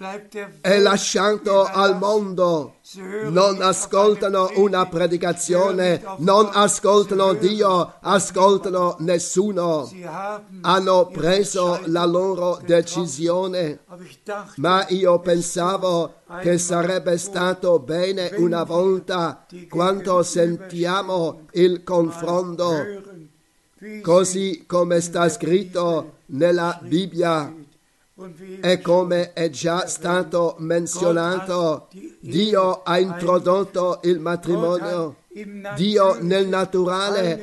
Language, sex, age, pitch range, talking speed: Italian, male, 50-69, 170-190 Hz, 80 wpm